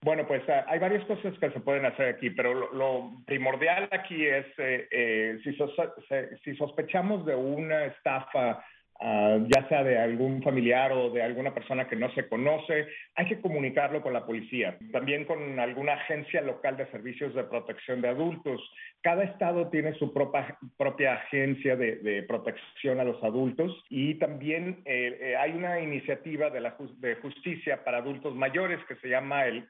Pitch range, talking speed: 130-160 Hz, 175 wpm